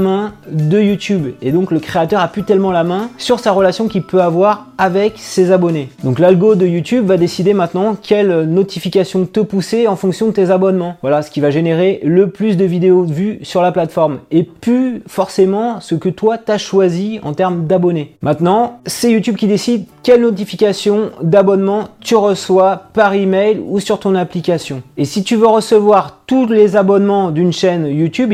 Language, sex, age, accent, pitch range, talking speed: French, male, 30-49, French, 165-205 Hz, 190 wpm